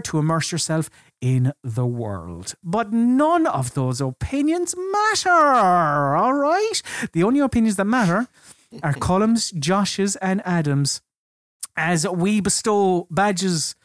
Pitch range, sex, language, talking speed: 140-200 Hz, male, English, 120 wpm